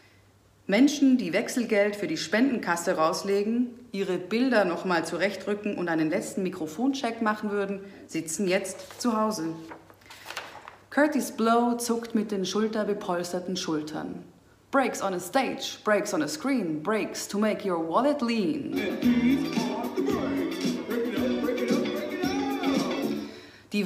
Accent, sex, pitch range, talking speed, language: German, female, 160-225 Hz, 110 wpm, German